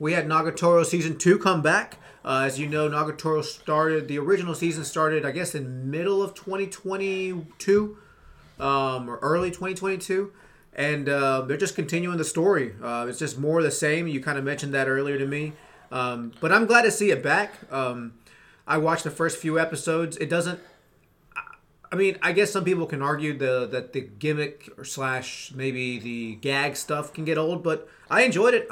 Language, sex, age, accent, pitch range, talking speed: English, male, 30-49, American, 135-170 Hz, 190 wpm